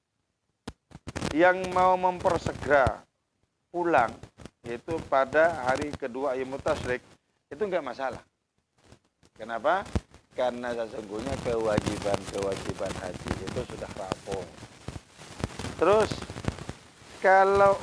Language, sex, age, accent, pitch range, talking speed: English, male, 40-59, Indonesian, 110-165 Hz, 75 wpm